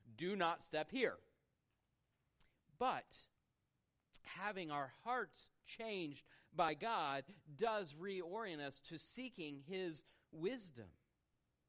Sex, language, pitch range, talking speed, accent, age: male, English, 140-185 Hz, 90 wpm, American, 40-59